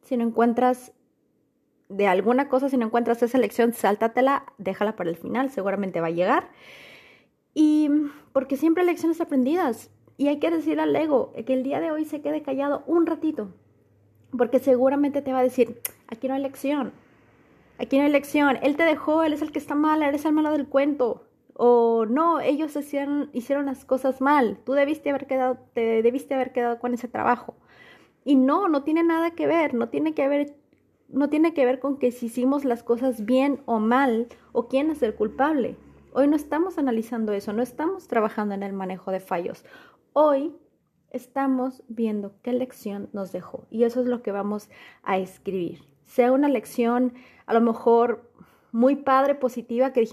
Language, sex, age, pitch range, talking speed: Spanish, female, 30-49, 230-285 Hz, 185 wpm